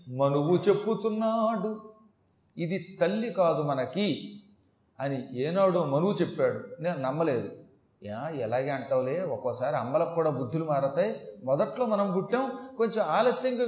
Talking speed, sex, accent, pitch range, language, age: 110 wpm, male, native, 140-210 Hz, Telugu, 30-49